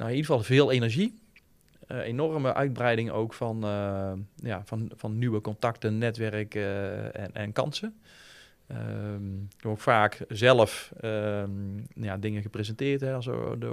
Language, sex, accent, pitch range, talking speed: Dutch, male, Dutch, 100-115 Hz, 115 wpm